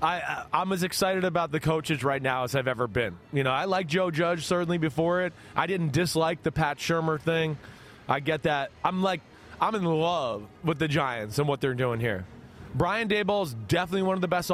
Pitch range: 150-195 Hz